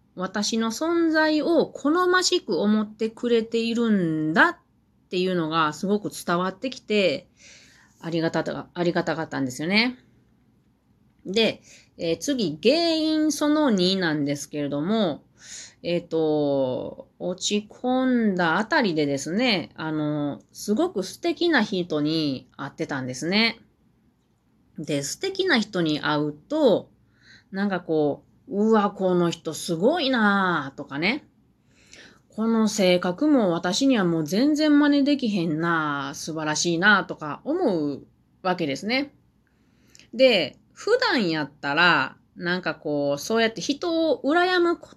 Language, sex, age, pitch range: Japanese, female, 30-49, 155-255 Hz